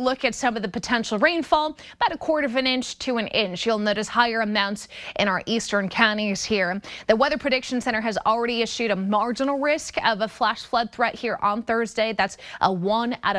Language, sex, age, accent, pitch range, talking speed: English, female, 20-39, American, 200-245 Hz, 210 wpm